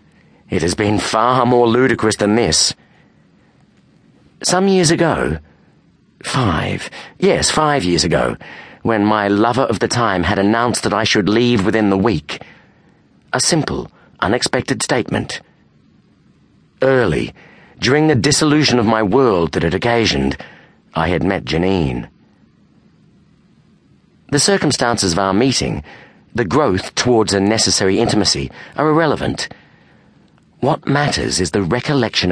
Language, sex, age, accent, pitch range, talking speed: English, male, 40-59, British, 95-125 Hz, 125 wpm